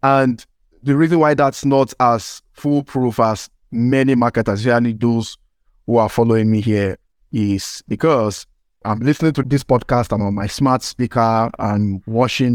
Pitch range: 110-140 Hz